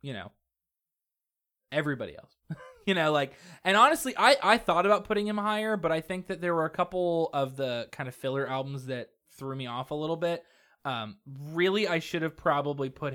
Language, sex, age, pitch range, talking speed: English, male, 20-39, 115-160 Hz, 200 wpm